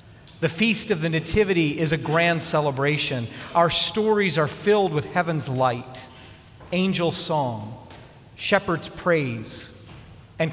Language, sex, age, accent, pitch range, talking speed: English, male, 40-59, American, 125-170 Hz, 120 wpm